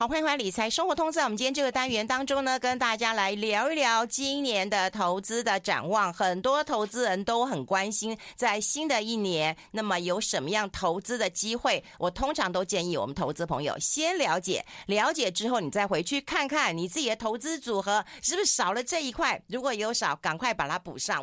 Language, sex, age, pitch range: Chinese, female, 50-69, 180-255 Hz